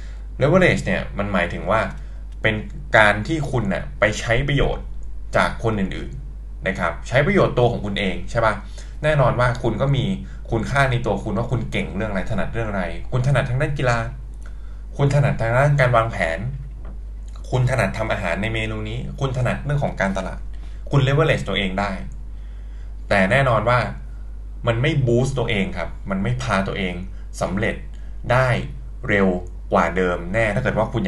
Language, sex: Thai, male